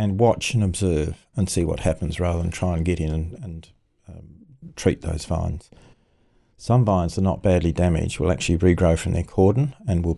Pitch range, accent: 85-100 Hz, Australian